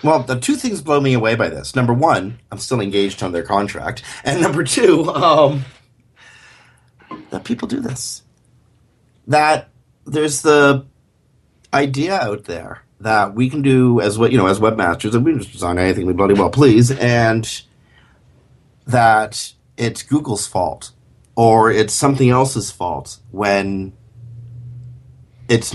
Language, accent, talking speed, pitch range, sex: English, American, 140 wpm, 105-130 Hz, male